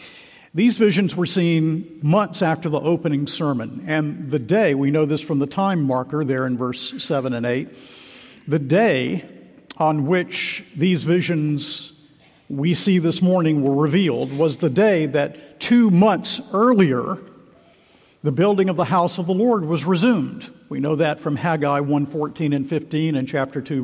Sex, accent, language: male, American, English